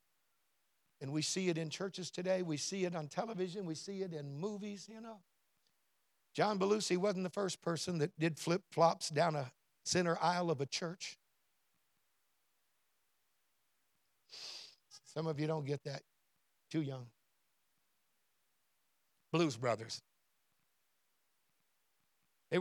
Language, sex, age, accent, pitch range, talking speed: English, male, 60-79, American, 160-245 Hz, 120 wpm